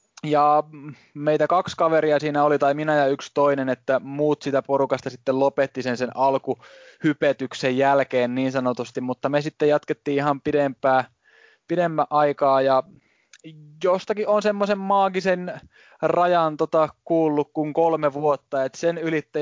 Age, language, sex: 20-39, Finnish, male